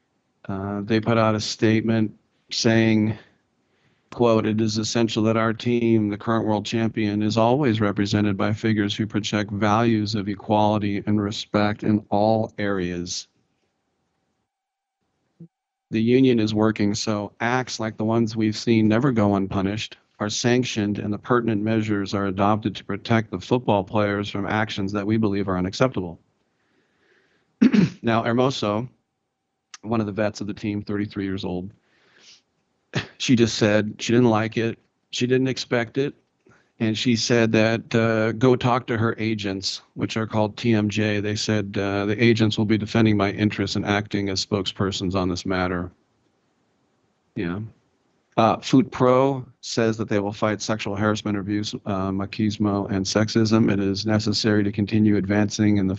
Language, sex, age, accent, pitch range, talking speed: English, male, 50-69, American, 100-115 Hz, 155 wpm